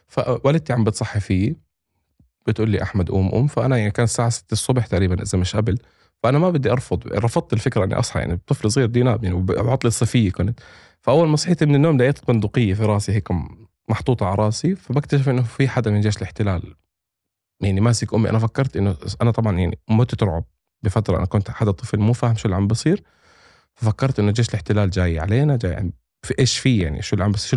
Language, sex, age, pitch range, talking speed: Arabic, male, 20-39, 100-120 Hz, 200 wpm